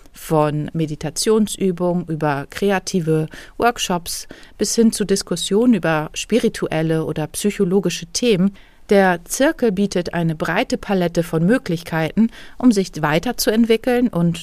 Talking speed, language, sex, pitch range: 110 wpm, German, female, 165-220 Hz